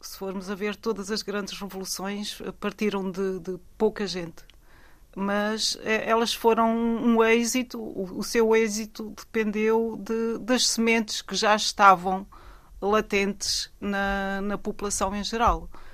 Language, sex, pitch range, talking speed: Portuguese, female, 185-215 Hz, 130 wpm